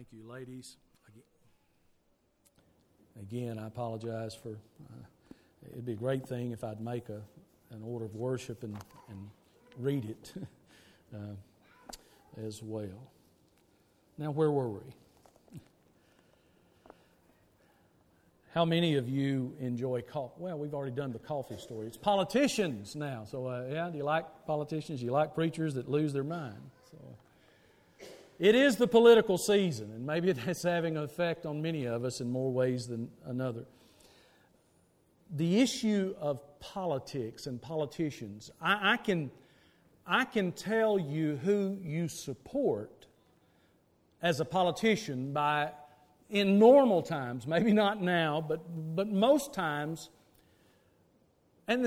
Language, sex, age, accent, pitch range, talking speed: English, male, 50-69, American, 125-180 Hz, 135 wpm